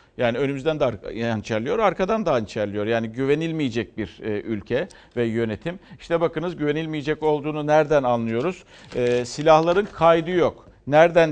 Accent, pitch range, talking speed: native, 130-170 Hz, 120 wpm